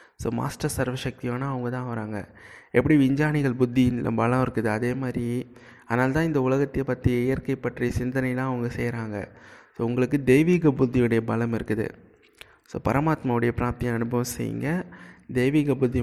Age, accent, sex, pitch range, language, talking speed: 20-39, native, male, 115-130 Hz, Tamil, 130 wpm